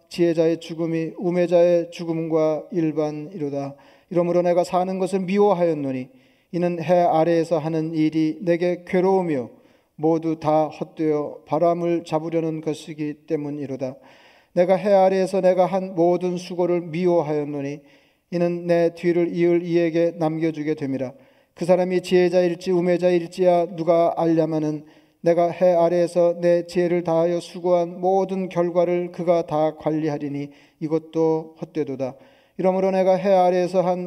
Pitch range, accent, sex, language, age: 160-180 Hz, native, male, Korean, 40-59